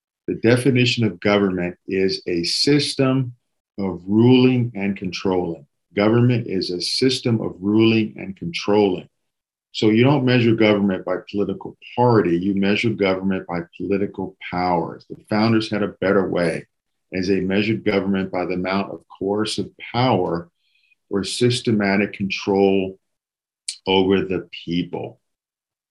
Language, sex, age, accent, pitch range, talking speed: English, male, 50-69, American, 95-110 Hz, 125 wpm